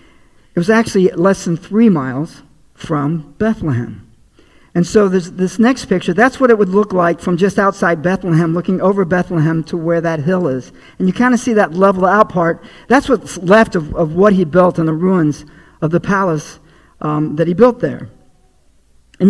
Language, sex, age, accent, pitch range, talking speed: English, male, 50-69, American, 160-195 Hz, 190 wpm